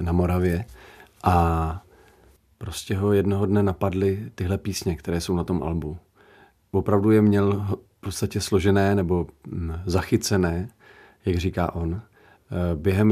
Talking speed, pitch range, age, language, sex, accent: 125 wpm, 95-105 Hz, 40-59, Czech, male, native